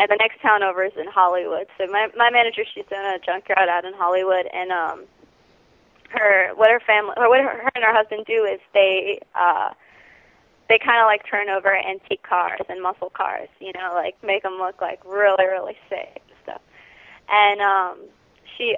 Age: 20-39